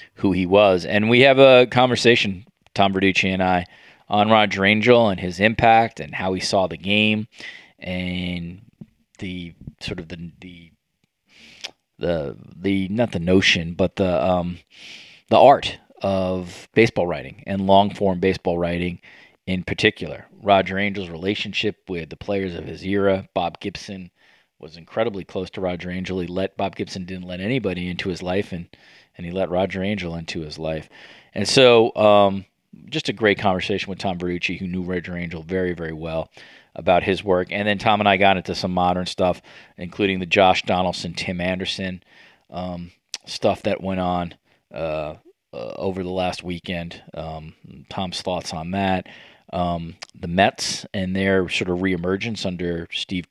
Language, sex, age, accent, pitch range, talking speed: English, male, 20-39, American, 90-100 Hz, 165 wpm